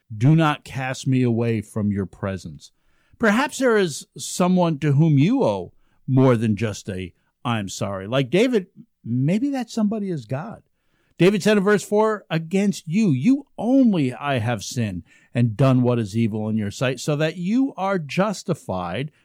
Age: 50-69